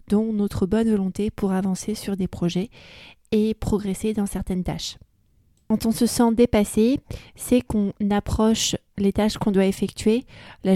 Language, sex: French, female